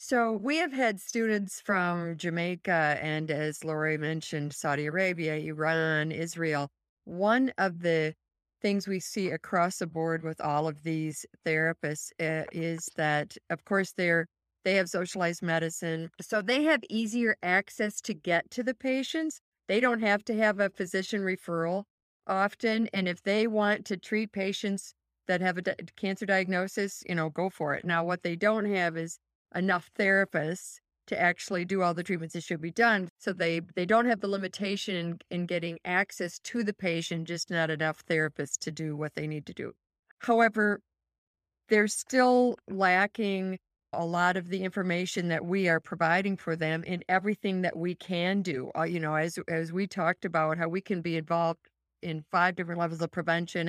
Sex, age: female, 50-69